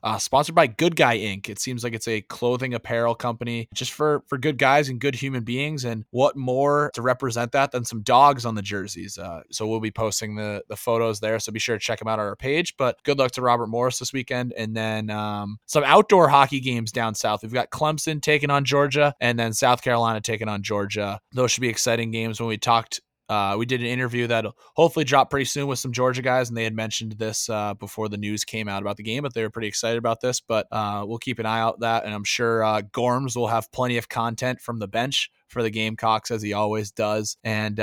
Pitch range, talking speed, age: 110-130 Hz, 245 wpm, 20-39